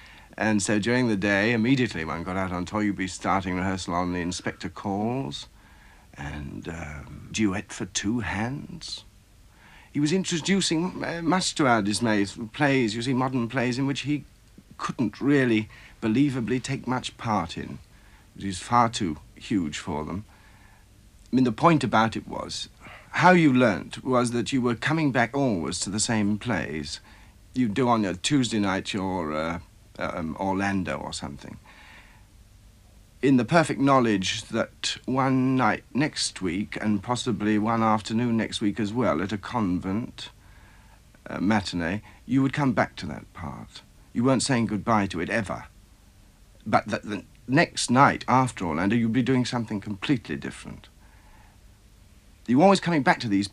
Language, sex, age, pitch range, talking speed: English, male, 60-79, 100-125 Hz, 160 wpm